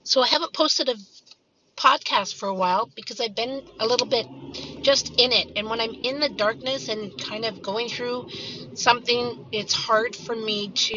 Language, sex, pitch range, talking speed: English, female, 195-240 Hz, 190 wpm